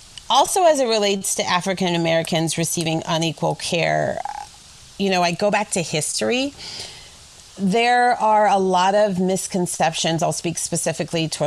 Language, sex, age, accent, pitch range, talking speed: English, female, 30-49, American, 155-185 Hz, 140 wpm